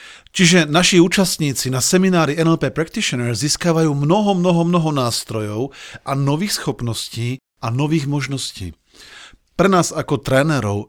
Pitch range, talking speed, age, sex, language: 115-155 Hz, 120 wpm, 40-59, male, Slovak